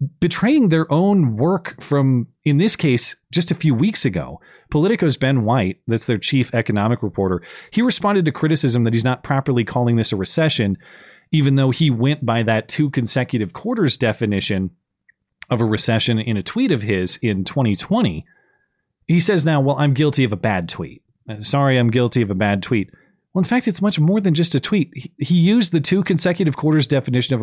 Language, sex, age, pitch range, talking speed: English, male, 30-49, 115-160 Hz, 190 wpm